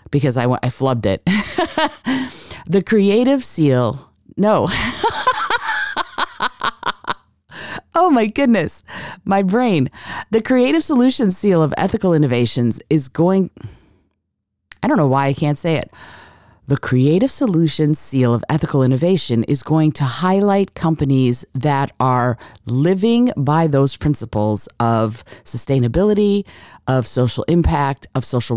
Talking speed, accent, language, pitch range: 120 wpm, American, English, 125-180 Hz